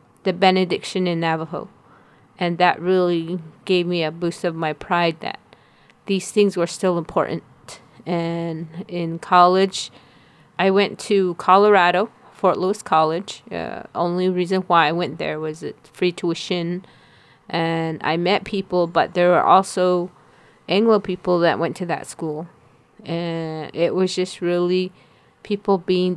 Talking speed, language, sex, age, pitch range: 140 wpm, English, female, 30-49, 165-190 Hz